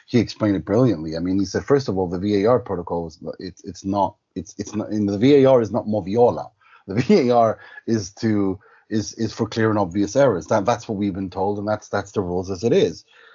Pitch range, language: 100-130 Hz, English